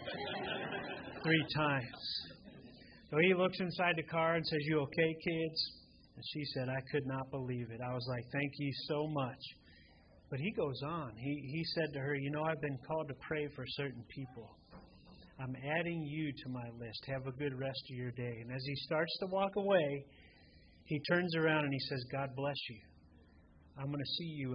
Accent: American